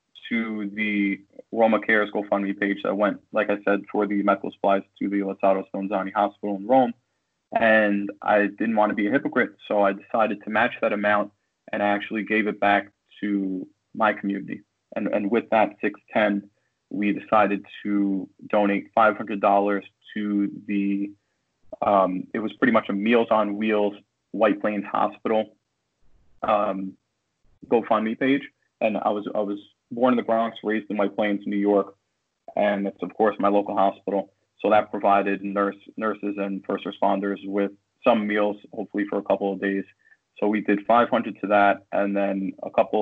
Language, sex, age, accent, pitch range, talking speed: English, male, 30-49, American, 100-105 Hz, 175 wpm